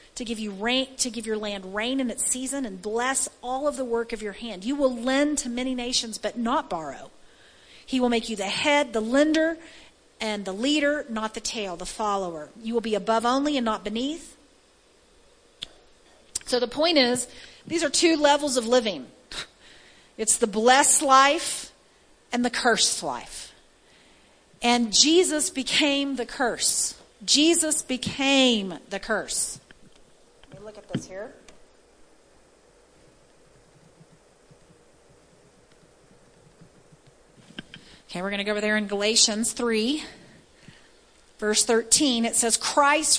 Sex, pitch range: female, 220-280 Hz